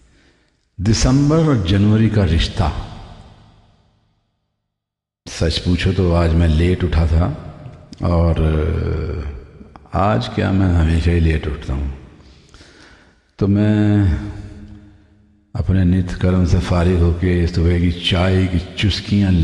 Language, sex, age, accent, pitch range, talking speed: Hindi, male, 50-69, native, 80-105 Hz, 110 wpm